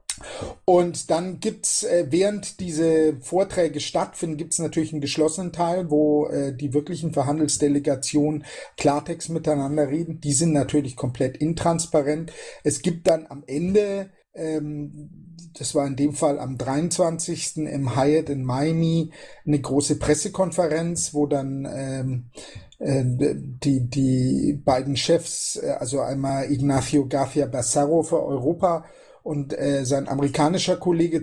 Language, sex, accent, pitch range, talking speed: German, male, German, 145-175 Hz, 120 wpm